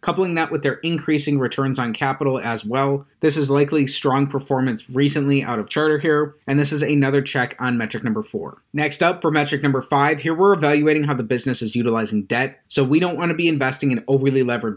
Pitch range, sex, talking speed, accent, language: 125-150 Hz, male, 220 wpm, American, English